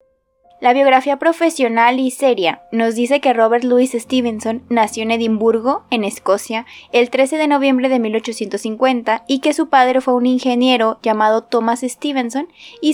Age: 20-39